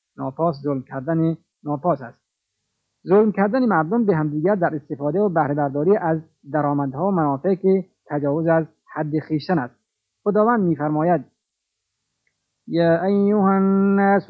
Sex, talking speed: male, 125 wpm